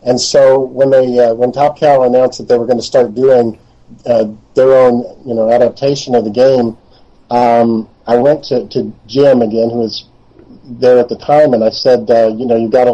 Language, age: English, 40-59